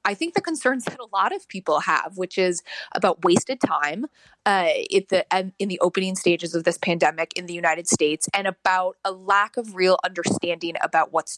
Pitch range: 175-215 Hz